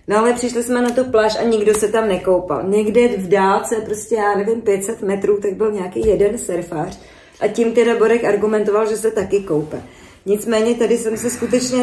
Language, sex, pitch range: Czech, female, 190-215 Hz